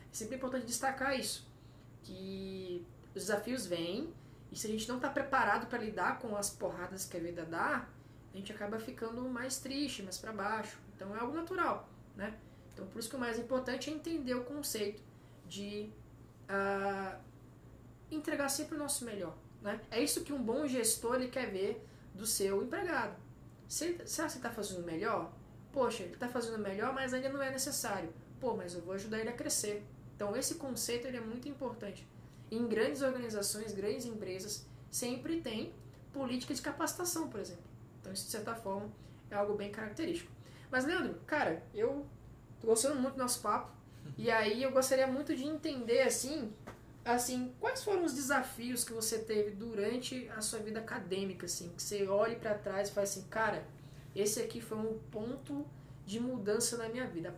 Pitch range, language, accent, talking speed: 195-260 Hz, Portuguese, Brazilian, 180 wpm